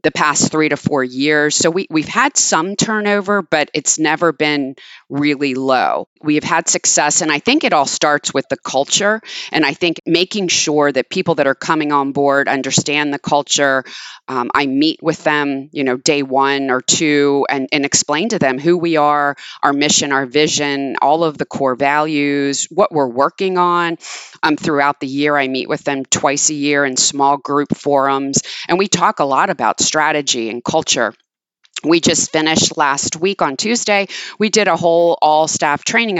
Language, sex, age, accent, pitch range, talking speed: English, female, 30-49, American, 140-170 Hz, 190 wpm